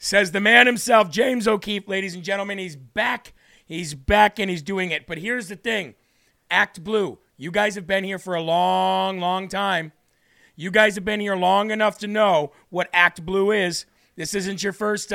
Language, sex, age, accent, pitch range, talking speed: English, male, 40-59, American, 175-205 Hz, 200 wpm